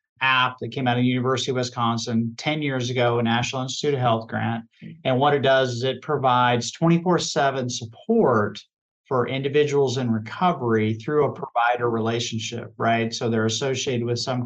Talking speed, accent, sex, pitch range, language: 170 wpm, American, male, 115-140 Hz, English